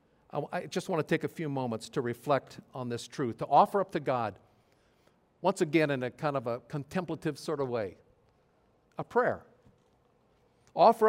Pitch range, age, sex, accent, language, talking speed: 125-155 Hz, 50-69, male, American, English, 175 wpm